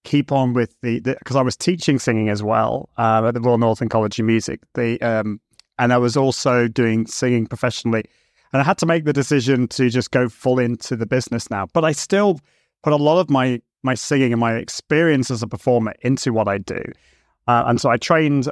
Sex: male